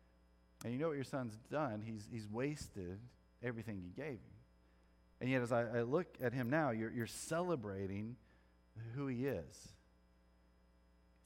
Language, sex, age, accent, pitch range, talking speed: English, male, 40-59, American, 90-130 Hz, 160 wpm